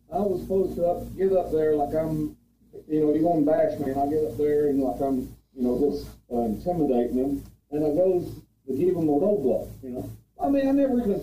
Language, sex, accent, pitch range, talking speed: English, male, American, 135-200 Hz, 245 wpm